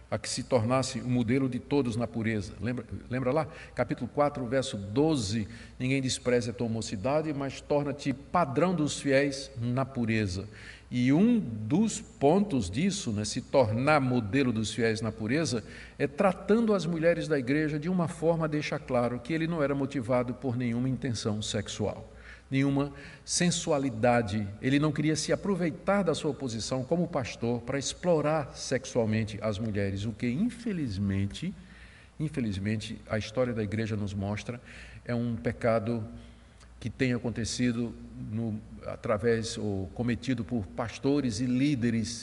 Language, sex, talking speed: Portuguese, male, 145 wpm